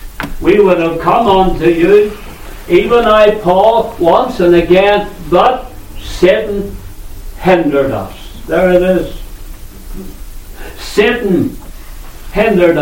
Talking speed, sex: 100 wpm, male